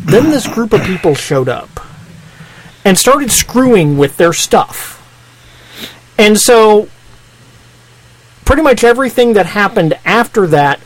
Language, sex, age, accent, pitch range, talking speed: English, male, 40-59, American, 145-200 Hz, 120 wpm